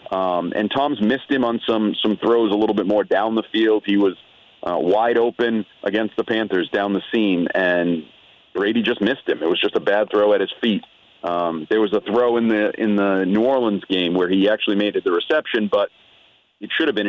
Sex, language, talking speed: male, English, 230 wpm